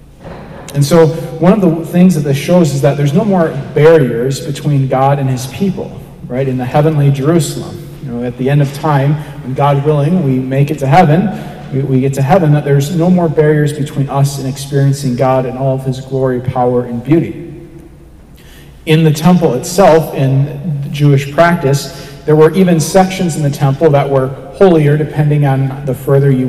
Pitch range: 135-160 Hz